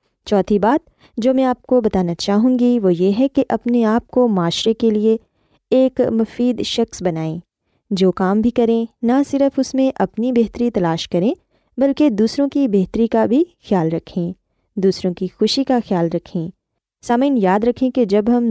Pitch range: 190-260 Hz